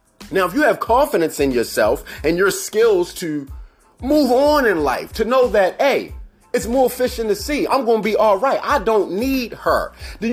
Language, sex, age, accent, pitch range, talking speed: English, male, 30-49, American, 175-265 Hz, 205 wpm